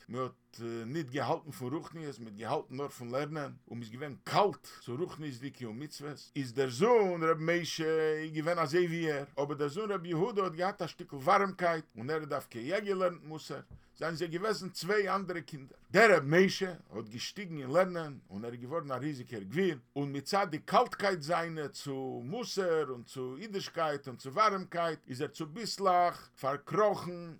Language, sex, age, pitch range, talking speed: English, male, 50-69, 140-180 Hz, 190 wpm